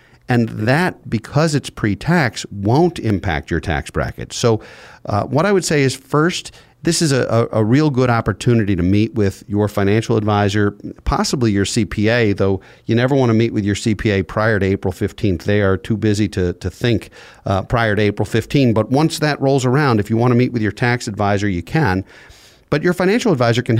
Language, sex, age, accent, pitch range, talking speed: English, male, 40-59, American, 100-125 Hz, 195 wpm